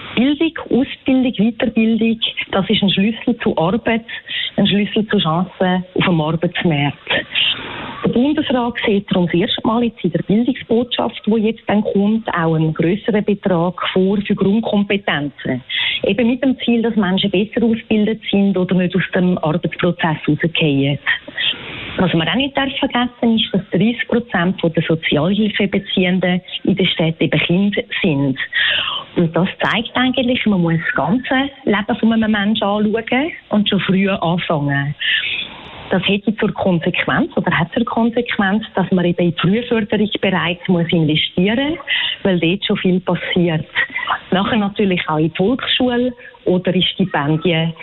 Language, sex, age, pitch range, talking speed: German, female, 30-49, 175-230 Hz, 145 wpm